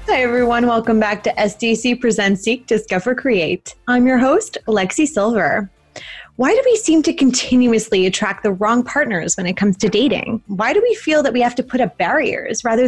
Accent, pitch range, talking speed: American, 200-265 Hz, 195 wpm